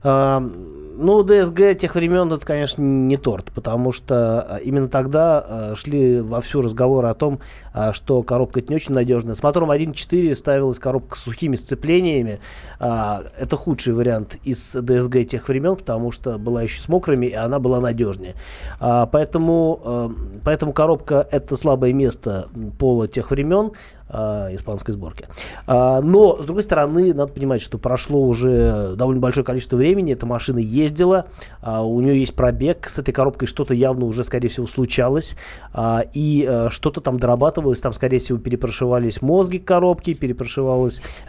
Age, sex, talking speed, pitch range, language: 20-39, male, 145 wpm, 120-145 Hz, Russian